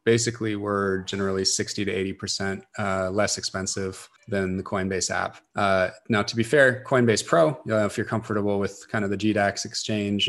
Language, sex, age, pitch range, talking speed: English, male, 20-39, 95-105 Hz, 165 wpm